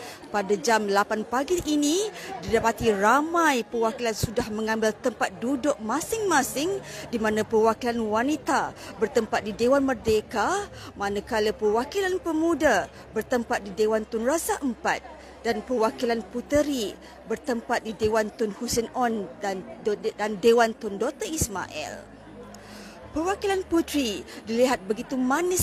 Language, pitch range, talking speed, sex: Malay, 220-280 Hz, 115 wpm, female